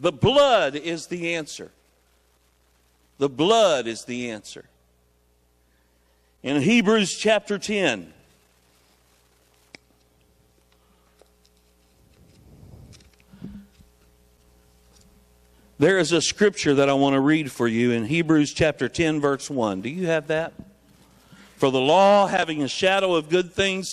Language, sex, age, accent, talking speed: English, male, 60-79, American, 110 wpm